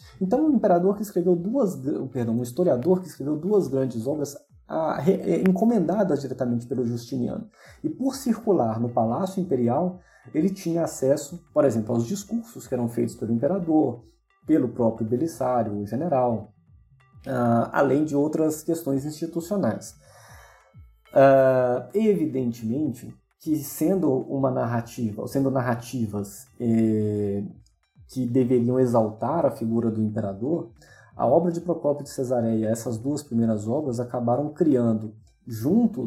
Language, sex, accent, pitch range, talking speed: Portuguese, male, Brazilian, 115-170 Hz, 130 wpm